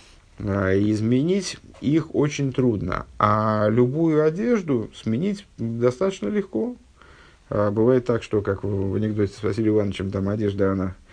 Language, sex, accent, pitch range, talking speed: Russian, male, native, 100-135 Hz, 110 wpm